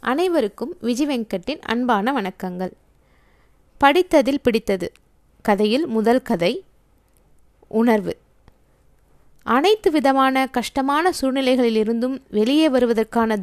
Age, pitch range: 20-39, 215-275 Hz